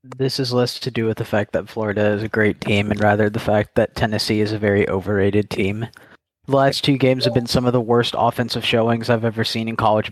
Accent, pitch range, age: American, 110-130 Hz, 30-49